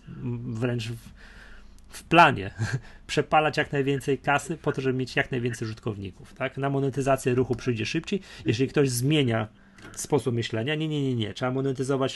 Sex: male